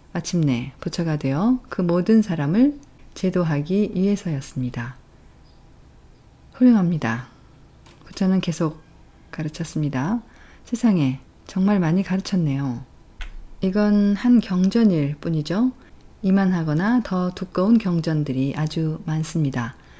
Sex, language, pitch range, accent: female, Korean, 140-200 Hz, native